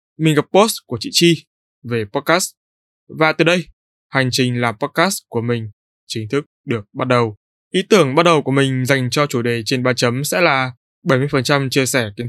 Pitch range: 125-170 Hz